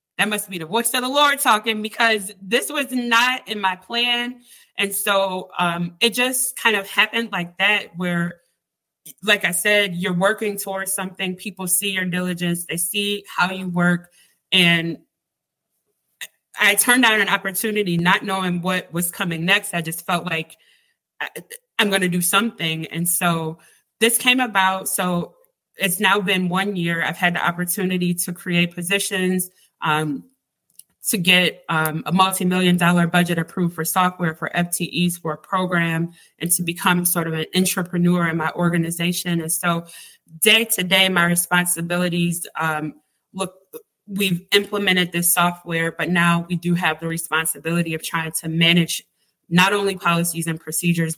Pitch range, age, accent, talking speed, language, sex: 170-195 Hz, 20-39, American, 160 wpm, English, female